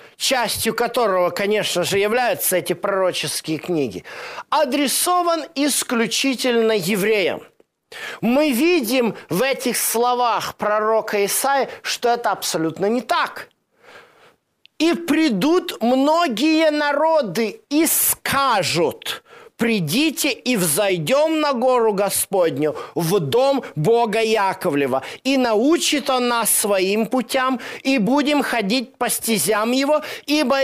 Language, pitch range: Russian, 205-285 Hz